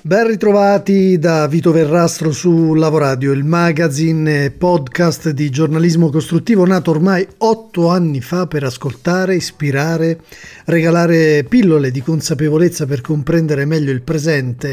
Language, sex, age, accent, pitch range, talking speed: Italian, male, 40-59, native, 145-185 Hz, 125 wpm